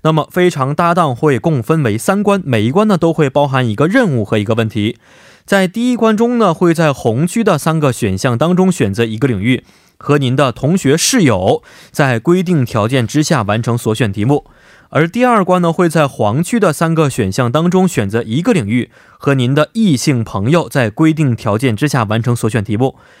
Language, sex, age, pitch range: Korean, male, 20-39, 115-170 Hz